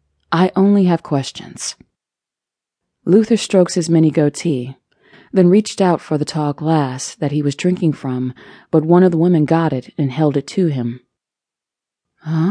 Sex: female